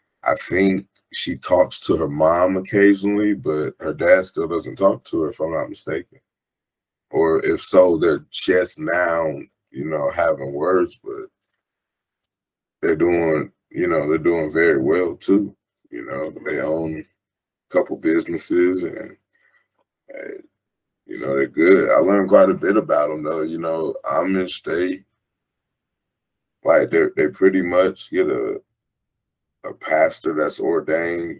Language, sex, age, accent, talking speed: English, male, 20-39, American, 145 wpm